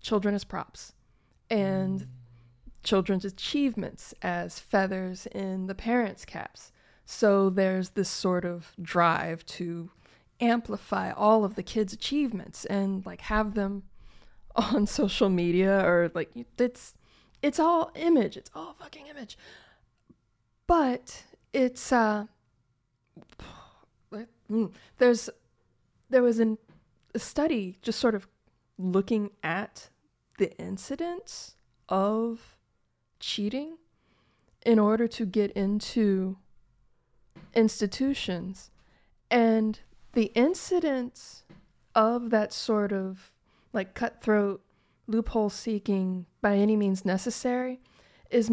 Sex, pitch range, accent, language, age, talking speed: female, 190-235 Hz, American, English, 20-39, 100 wpm